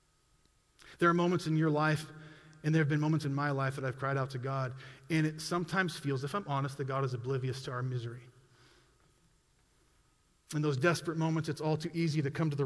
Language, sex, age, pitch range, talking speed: English, male, 40-59, 135-170 Hz, 220 wpm